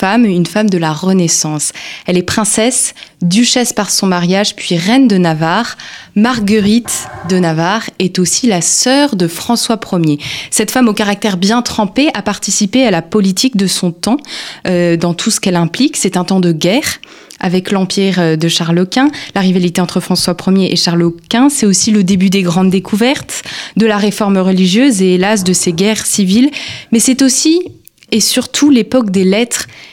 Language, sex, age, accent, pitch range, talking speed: French, female, 20-39, French, 185-230 Hz, 180 wpm